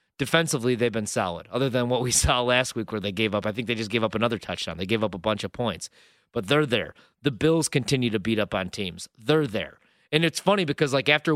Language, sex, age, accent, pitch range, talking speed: English, male, 30-49, American, 120-160 Hz, 260 wpm